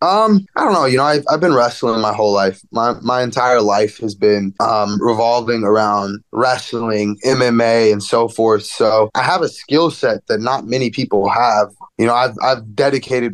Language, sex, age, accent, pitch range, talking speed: English, male, 20-39, American, 115-145 Hz, 195 wpm